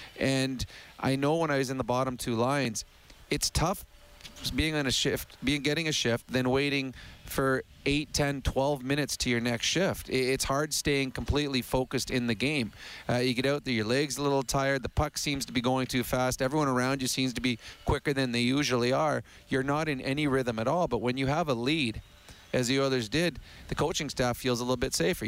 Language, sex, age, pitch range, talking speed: English, male, 30-49, 115-135 Hz, 225 wpm